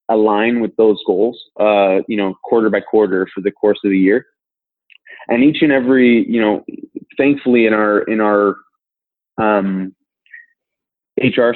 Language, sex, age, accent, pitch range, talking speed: English, male, 20-39, American, 100-115 Hz, 150 wpm